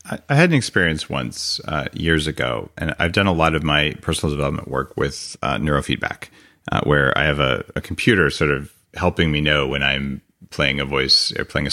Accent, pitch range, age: American, 75-90 Hz, 30-49